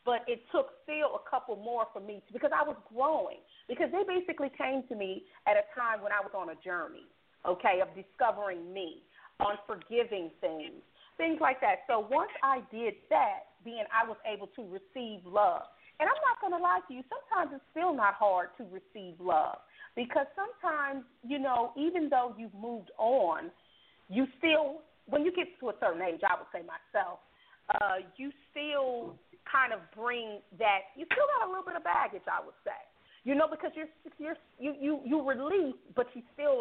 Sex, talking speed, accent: female, 195 wpm, American